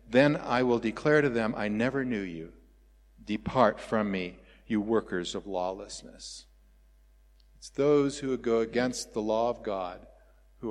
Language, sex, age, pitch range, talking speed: English, male, 50-69, 95-135 Hz, 150 wpm